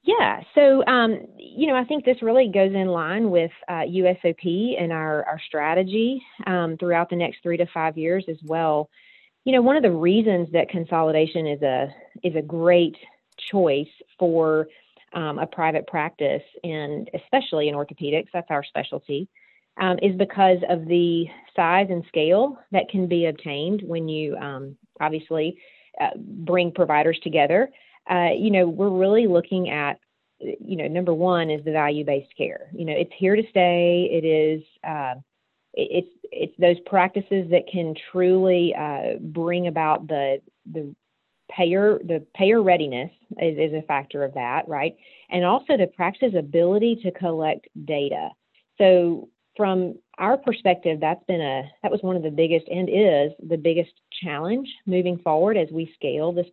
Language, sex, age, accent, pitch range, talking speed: English, female, 30-49, American, 160-195 Hz, 165 wpm